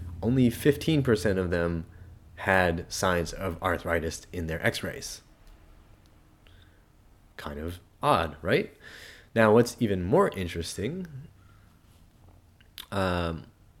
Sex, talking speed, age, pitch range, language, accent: male, 90 wpm, 30-49, 85-115 Hz, English, American